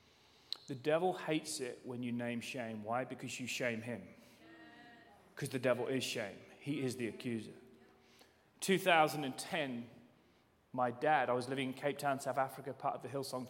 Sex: male